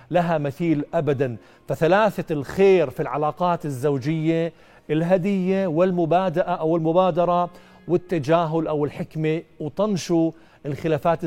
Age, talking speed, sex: 50-69, 90 wpm, male